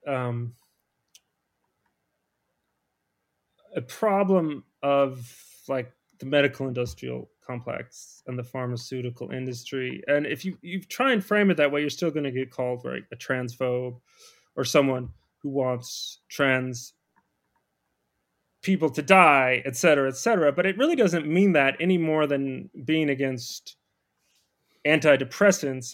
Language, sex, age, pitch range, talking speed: English, male, 30-49, 125-160 Hz, 125 wpm